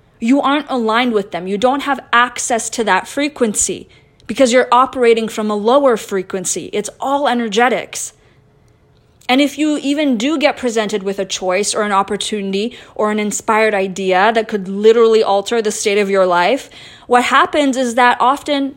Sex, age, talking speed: female, 20-39, 170 wpm